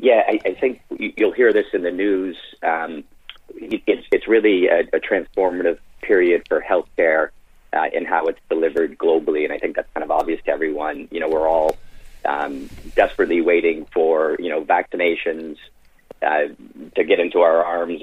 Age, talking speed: 40-59, 175 wpm